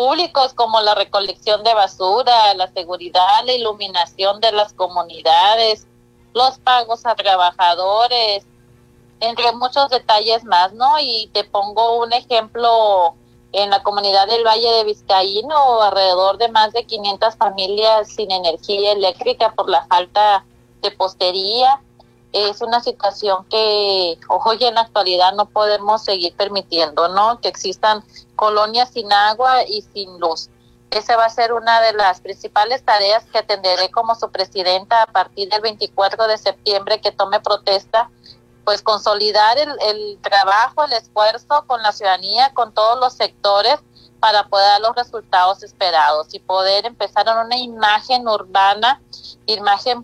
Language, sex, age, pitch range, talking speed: Spanish, female, 30-49, 190-230 Hz, 145 wpm